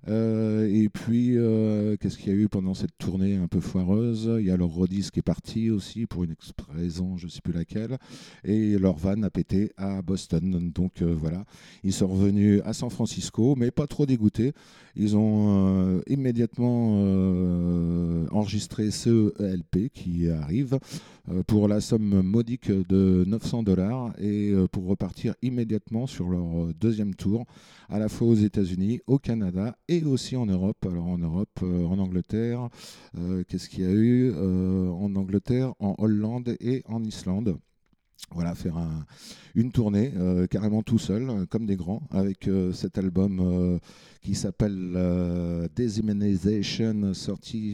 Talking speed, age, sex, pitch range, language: 165 wpm, 50-69, male, 90-110 Hz, French